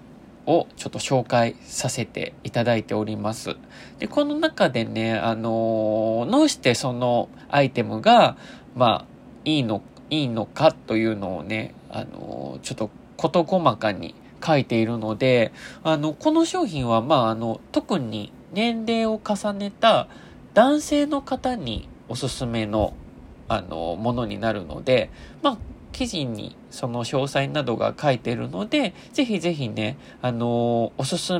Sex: male